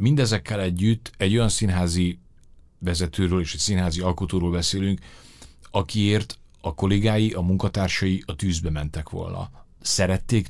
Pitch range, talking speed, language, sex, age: 90-105 Hz, 120 wpm, English, male, 40-59